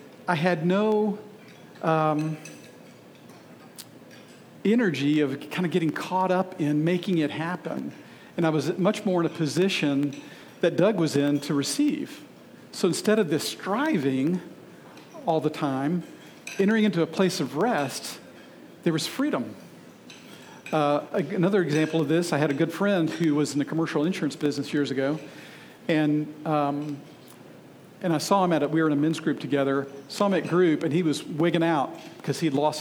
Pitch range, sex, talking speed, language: 145-175 Hz, male, 170 wpm, English